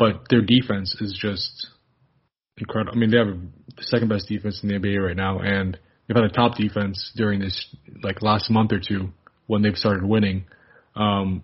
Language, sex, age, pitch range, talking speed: English, male, 20-39, 100-120 Hz, 195 wpm